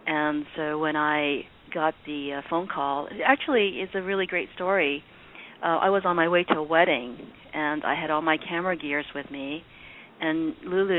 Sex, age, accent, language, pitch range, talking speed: female, 40-59, American, English, 150-190 Hz, 195 wpm